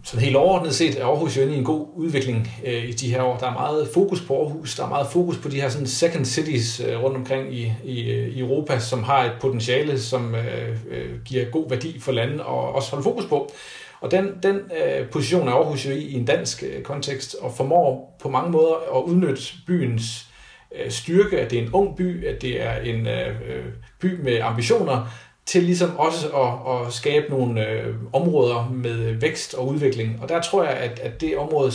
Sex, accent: male, native